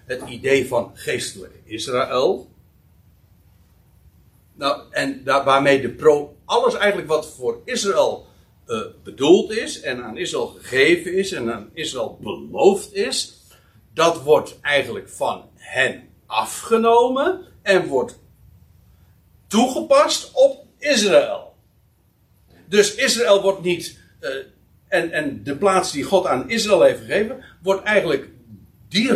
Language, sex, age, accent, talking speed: Dutch, male, 60-79, Dutch, 115 wpm